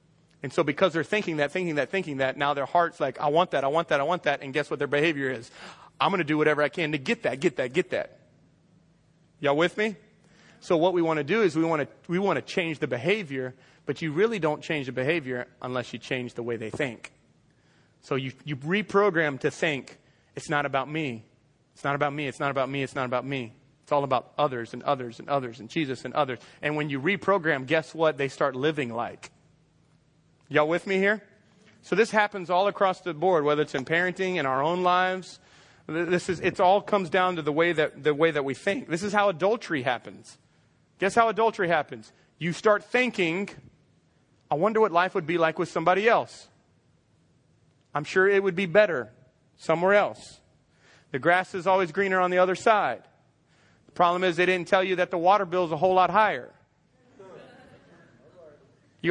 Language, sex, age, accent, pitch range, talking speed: English, male, 30-49, American, 140-185 Hz, 210 wpm